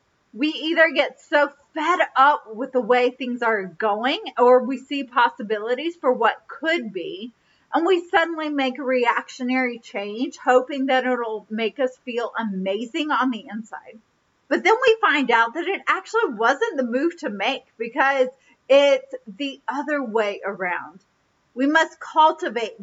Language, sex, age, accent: English, female, 30-49, American